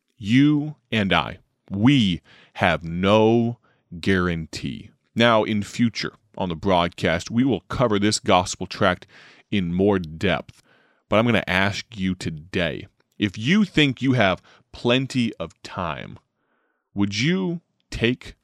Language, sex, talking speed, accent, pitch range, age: English, male, 130 wpm, American, 90-120 Hz, 30-49